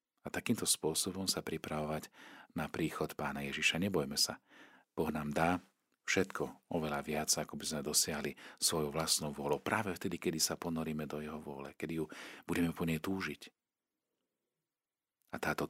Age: 40-59